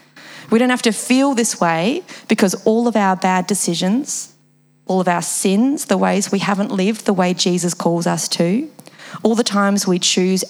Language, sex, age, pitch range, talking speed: English, female, 30-49, 180-215 Hz, 190 wpm